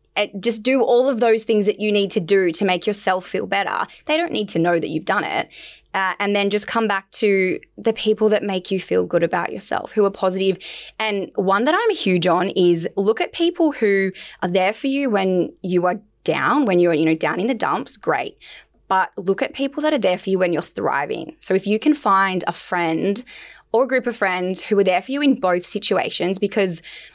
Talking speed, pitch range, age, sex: 235 wpm, 180-225 Hz, 10-29, female